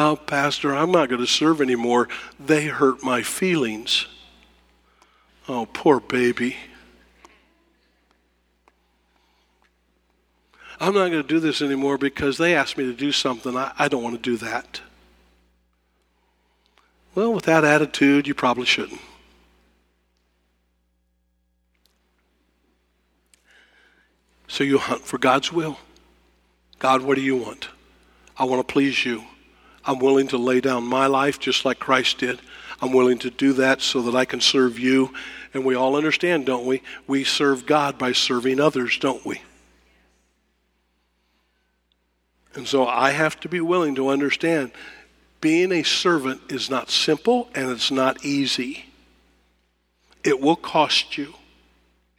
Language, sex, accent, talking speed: English, male, American, 135 wpm